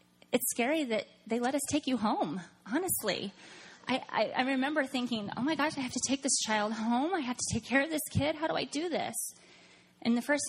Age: 20-39